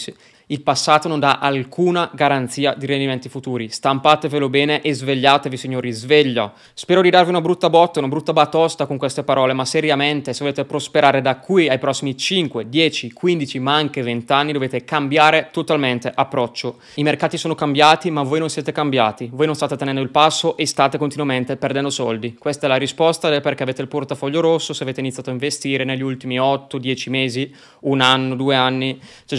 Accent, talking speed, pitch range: native, 185 wpm, 130-155 Hz